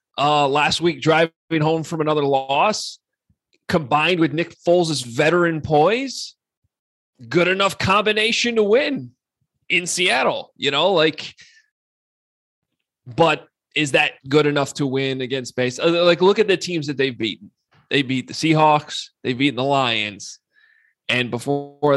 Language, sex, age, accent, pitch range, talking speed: English, male, 20-39, American, 130-165 Hz, 140 wpm